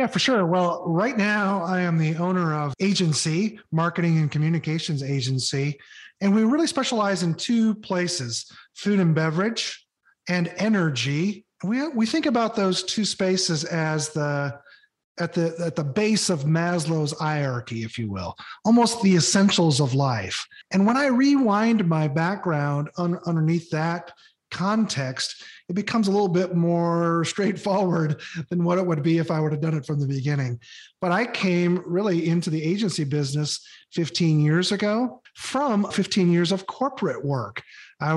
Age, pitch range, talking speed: 40-59, 155-195 Hz, 160 wpm